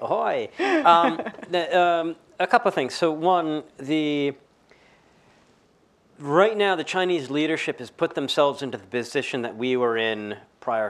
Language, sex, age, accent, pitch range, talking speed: English, male, 40-59, American, 115-155 Hz, 150 wpm